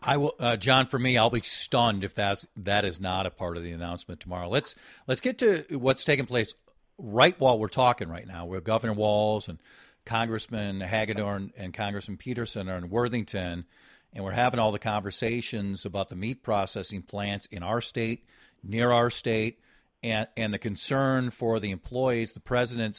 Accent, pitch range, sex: American, 105-145 Hz, male